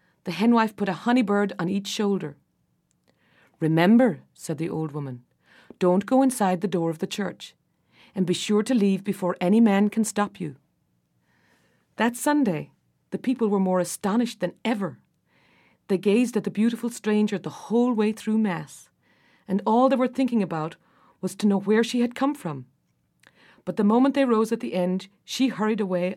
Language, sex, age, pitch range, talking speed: English, female, 40-59, 170-230 Hz, 175 wpm